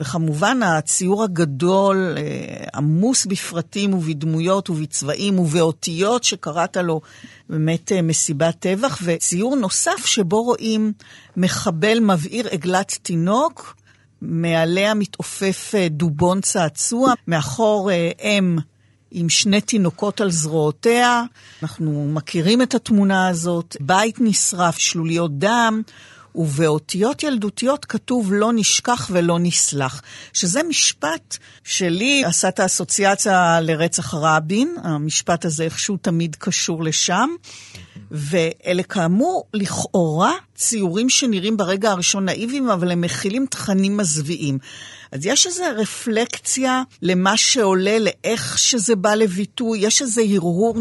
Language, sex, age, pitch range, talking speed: Hebrew, female, 50-69, 165-220 Hz, 105 wpm